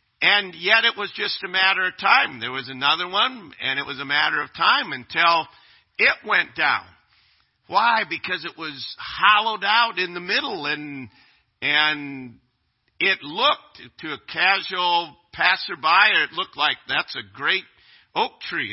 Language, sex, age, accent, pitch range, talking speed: English, male, 50-69, American, 120-170 Hz, 155 wpm